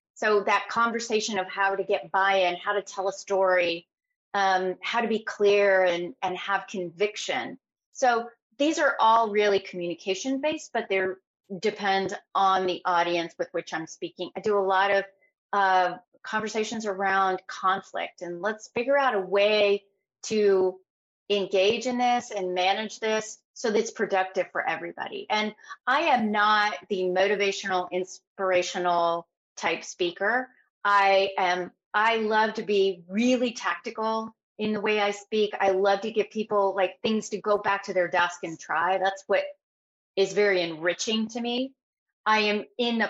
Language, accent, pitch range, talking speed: English, American, 185-220 Hz, 160 wpm